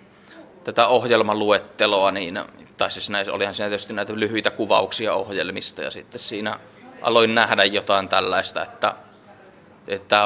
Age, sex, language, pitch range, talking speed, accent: 20-39, male, Finnish, 100-115 Hz, 130 wpm, native